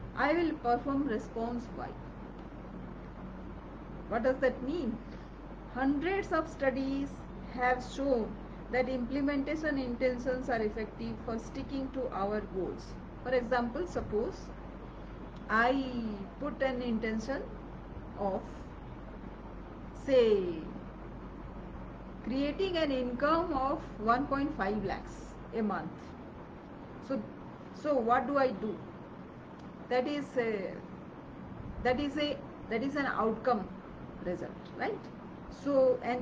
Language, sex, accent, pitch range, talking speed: English, female, Indian, 230-280 Hz, 100 wpm